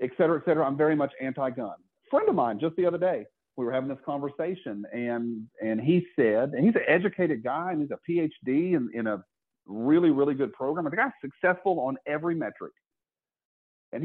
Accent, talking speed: American, 205 wpm